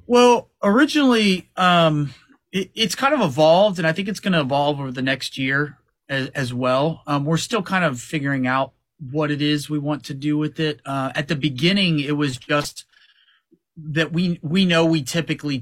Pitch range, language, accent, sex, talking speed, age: 125-160 Hz, English, American, male, 190 wpm, 30-49